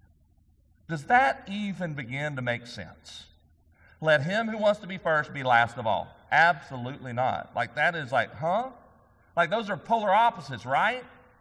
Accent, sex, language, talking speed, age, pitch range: American, male, English, 165 wpm, 40-59, 105-170 Hz